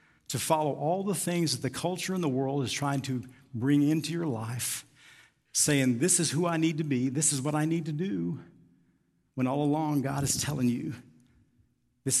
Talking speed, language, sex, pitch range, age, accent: 200 wpm, English, male, 135-155 Hz, 50-69, American